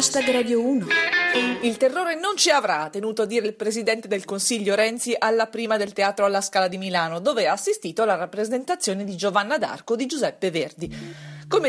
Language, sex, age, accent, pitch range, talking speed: Italian, female, 30-49, native, 190-265 Hz, 175 wpm